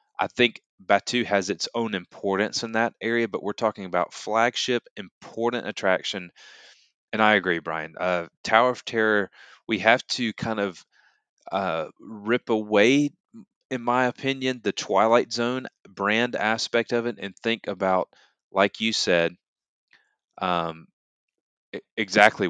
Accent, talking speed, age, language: American, 135 wpm, 20-39, English